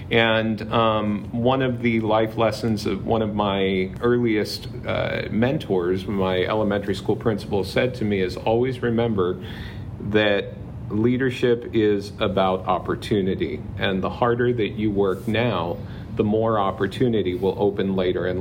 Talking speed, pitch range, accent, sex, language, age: 140 wpm, 100-120 Hz, American, male, English, 40-59